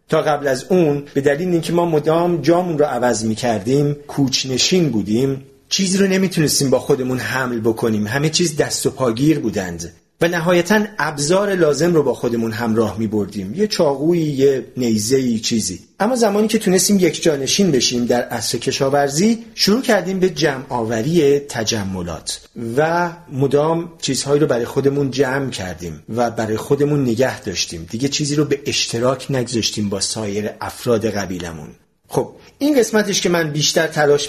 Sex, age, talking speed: male, 40-59, 155 wpm